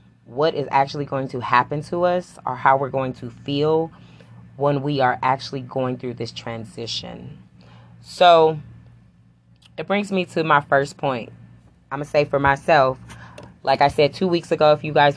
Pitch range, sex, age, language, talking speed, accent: 115-170 Hz, female, 20-39, English, 180 wpm, American